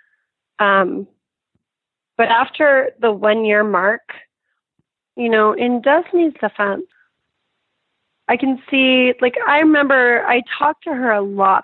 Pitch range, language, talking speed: 200-255 Hz, English, 125 wpm